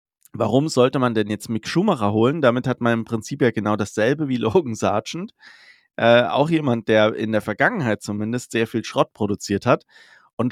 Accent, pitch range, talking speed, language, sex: German, 115-145 Hz, 190 wpm, German, male